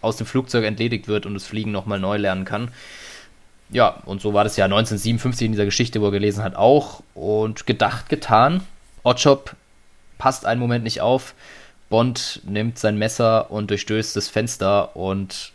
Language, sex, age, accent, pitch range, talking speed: German, male, 20-39, German, 105-120 Hz, 175 wpm